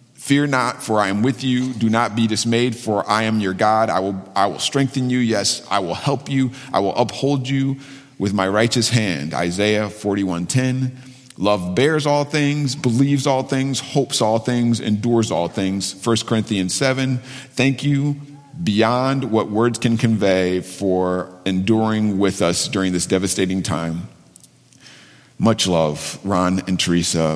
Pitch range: 95-130 Hz